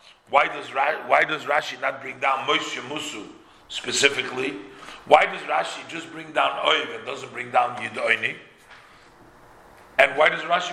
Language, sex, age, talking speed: English, male, 50-69, 155 wpm